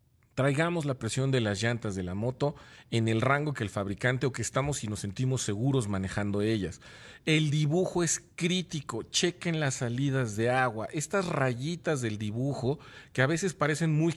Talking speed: 180 wpm